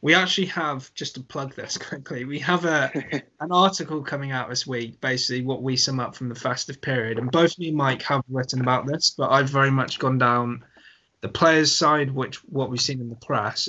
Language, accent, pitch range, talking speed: English, British, 120-155 Hz, 225 wpm